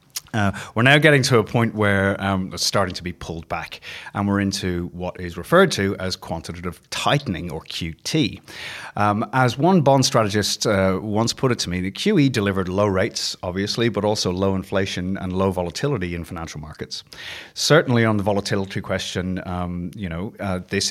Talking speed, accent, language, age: 185 wpm, British, English, 30-49